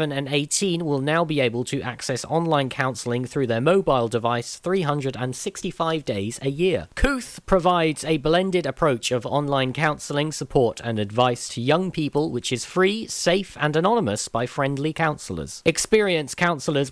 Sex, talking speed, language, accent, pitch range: male, 155 wpm, English, British, 125-165 Hz